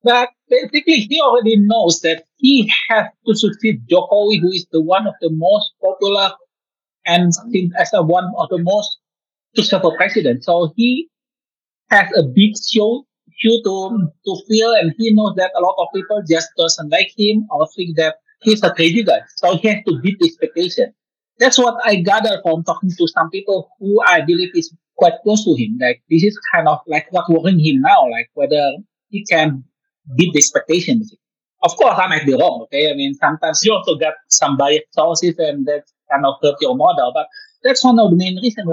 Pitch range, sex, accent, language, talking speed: 170-225 Hz, male, Indonesian, English, 195 wpm